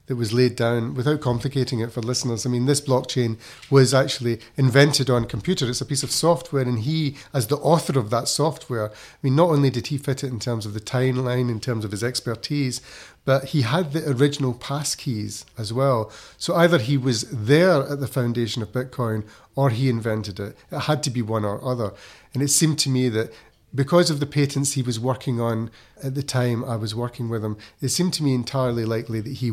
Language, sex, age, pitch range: English, male, 30-49, 115-140 Hz